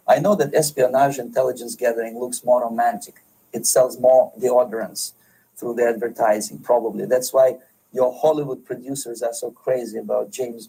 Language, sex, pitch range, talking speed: English, male, 125-175 Hz, 150 wpm